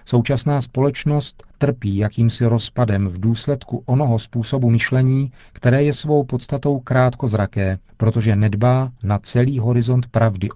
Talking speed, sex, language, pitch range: 120 wpm, male, Czech, 110-130 Hz